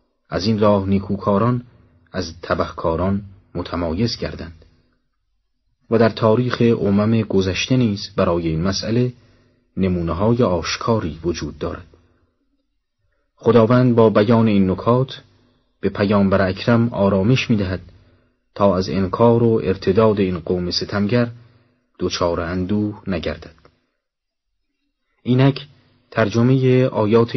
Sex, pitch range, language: male, 85-115 Hz, Persian